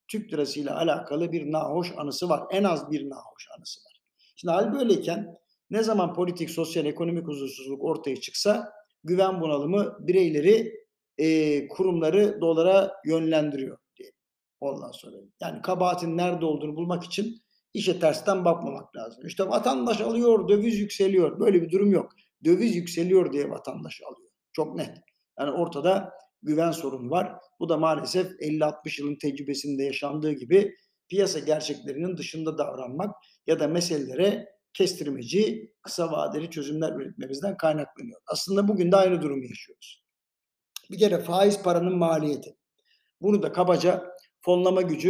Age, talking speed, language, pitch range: 50-69, 135 wpm, Turkish, 155-195 Hz